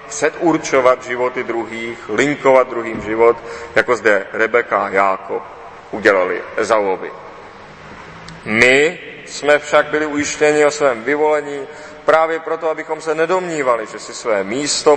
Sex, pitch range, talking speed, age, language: male, 125-150 Hz, 120 wpm, 40-59, Czech